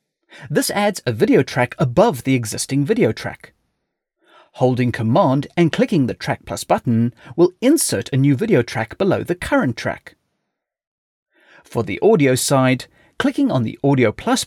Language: English